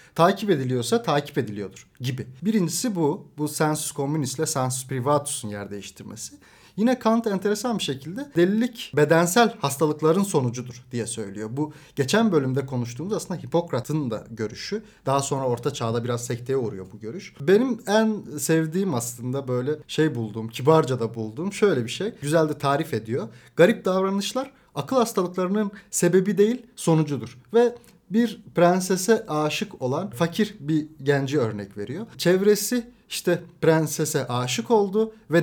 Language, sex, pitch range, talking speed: Turkish, male, 125-190 Hz, 140 wpm